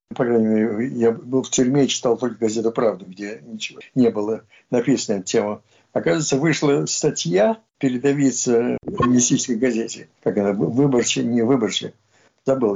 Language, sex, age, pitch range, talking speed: Russian, male, 60-79, 120-150 Hz, 150 wpm